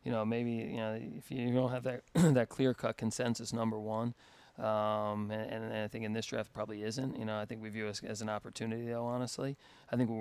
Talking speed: 240 wpm